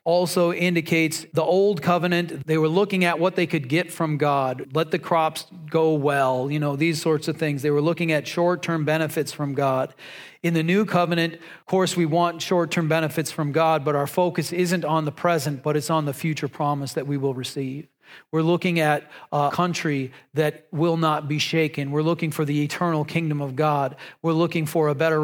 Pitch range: 150-170 Hz